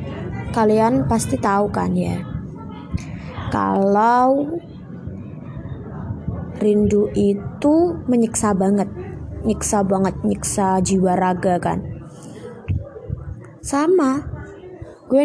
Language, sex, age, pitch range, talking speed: Indonesian, female, 20-39, 180-235 Hz, 70 wpm